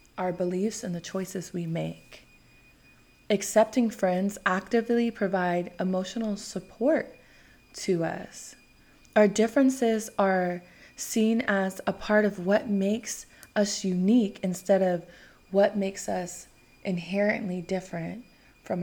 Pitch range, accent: 170-210 Hz, American